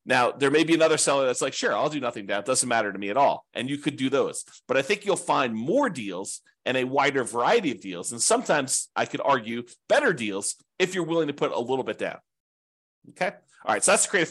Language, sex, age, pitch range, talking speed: English, male, 40-59, 110-150 Hz, 250 wpm